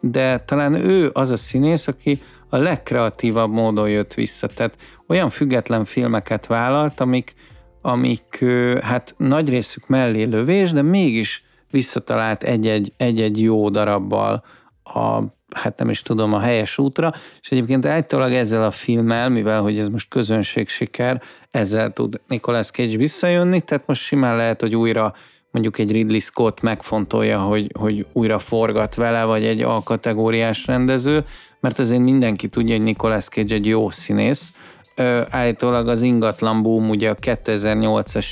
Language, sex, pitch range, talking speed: Hungarian, male, 110-125 Hz, 145 wpm